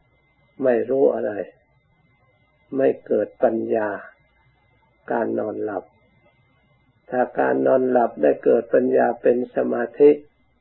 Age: 60-79